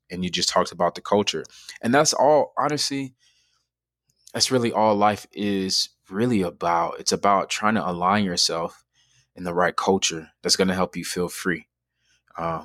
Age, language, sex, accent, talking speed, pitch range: 20-39, English, male, American, 170 wpm, 85-95 Hz